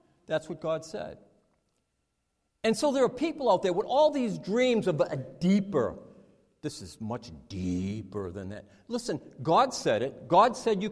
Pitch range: 175-250 Hz